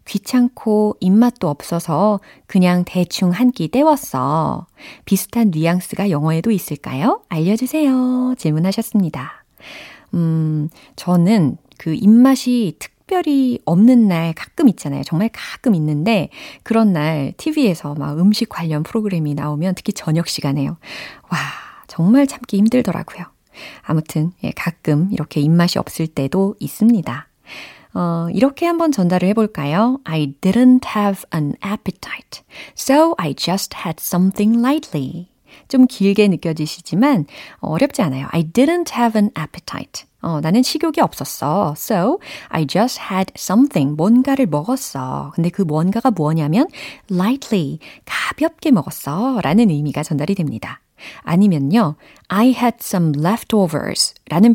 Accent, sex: native, female